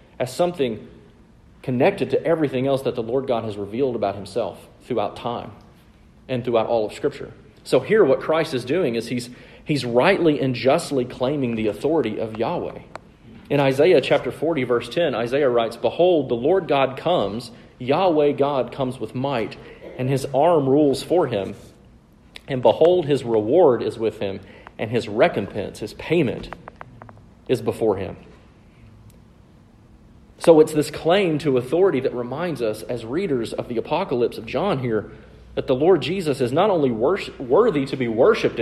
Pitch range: 120-150 Hz